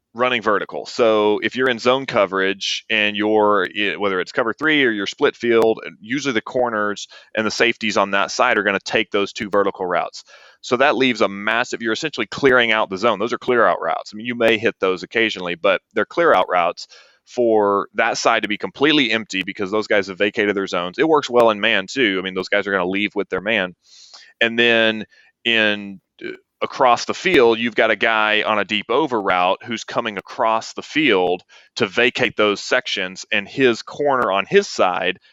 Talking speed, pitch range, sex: 210 wpm, 100-120 Hz, male